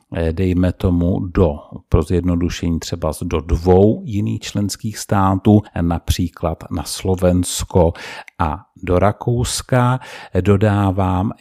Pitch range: 90-105 Hz